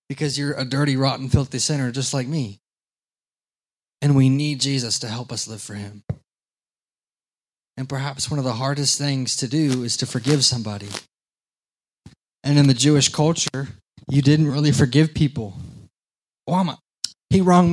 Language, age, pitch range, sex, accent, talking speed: English, 20-39, 125-150 Hz, male, American, 160 wpm